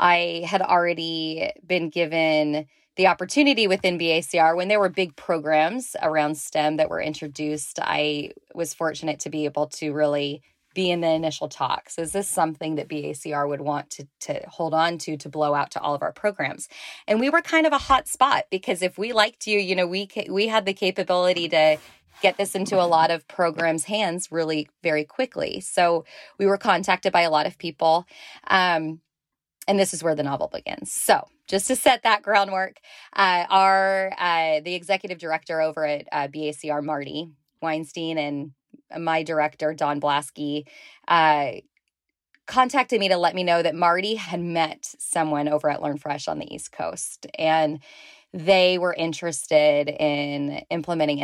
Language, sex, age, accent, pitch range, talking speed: English, female, 20-39, American, 150-190 Hz, 175 wpm